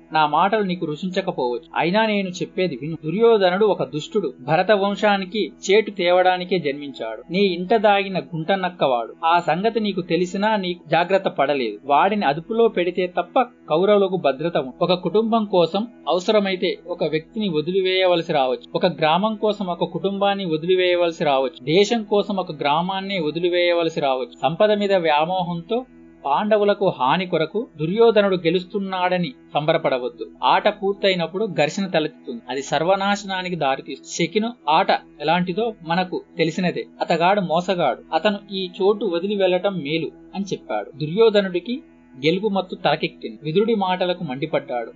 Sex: male